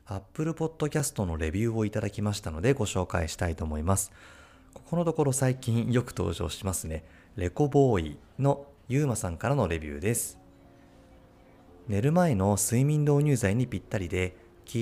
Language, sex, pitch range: Japanese, male, 90-120 Hz